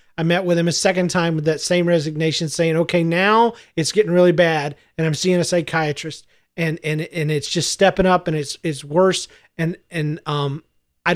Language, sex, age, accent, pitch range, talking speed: English, male, 40-59, American, 155-190 Hz, 205 wpm